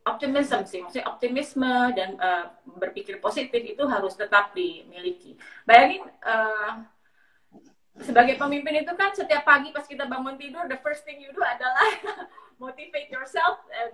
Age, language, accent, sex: 30-49, Indonesian, native, female